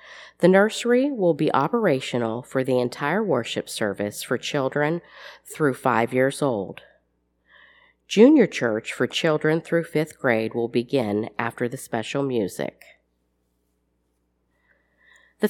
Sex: female